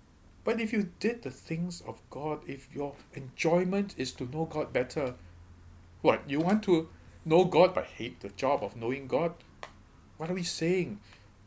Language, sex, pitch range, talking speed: English, male, 120-180 Hz, 175 wpm